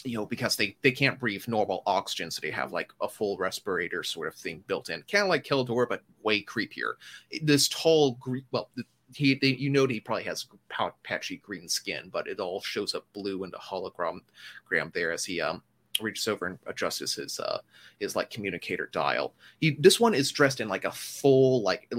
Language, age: English, 30-49